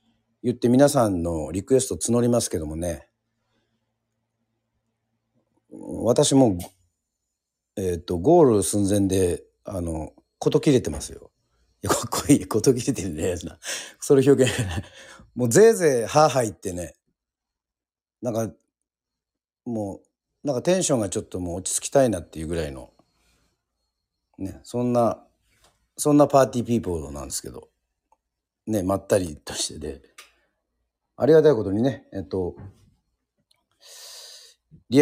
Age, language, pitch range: 50-69, Japanese, 85-120 Hz